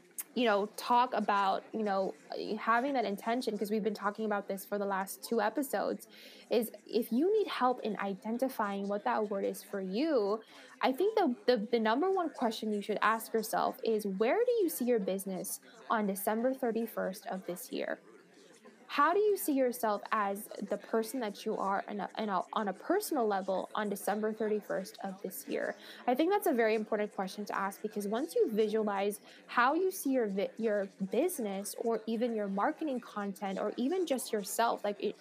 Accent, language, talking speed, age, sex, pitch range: American, English, 195 wpm, 10-29, female, 205-250 Hz